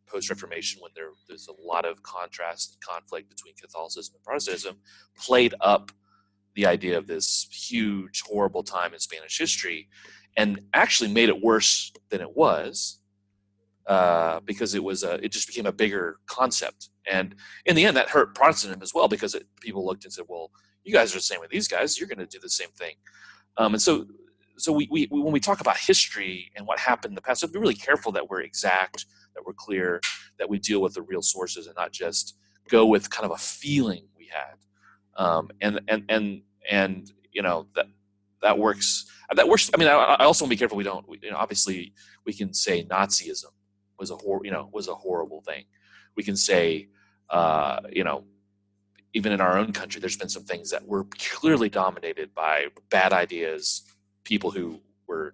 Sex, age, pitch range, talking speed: male, 30-49, 95-110 Hz, 200 wpm